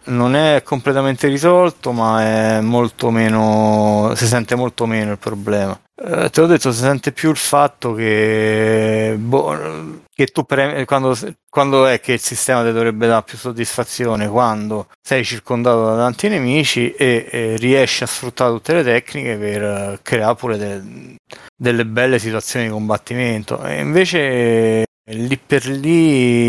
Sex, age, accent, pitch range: male, 30-49, native, 110-125 Hz